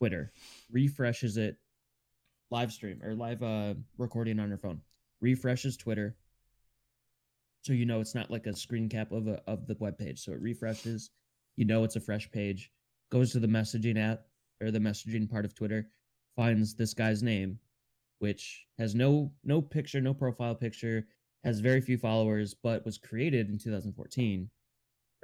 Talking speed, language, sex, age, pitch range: 165 wpm, English, male, 20-39, 105-125 Hz